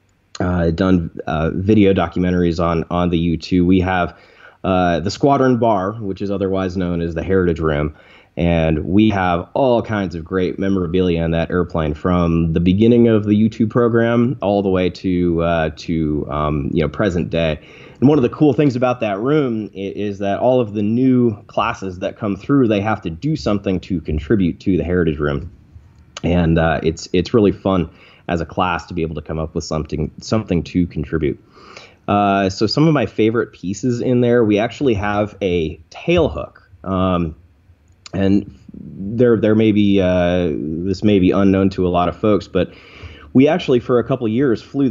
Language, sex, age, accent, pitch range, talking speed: English, male, 20-39, American, 85-105 Hz, 190 wpm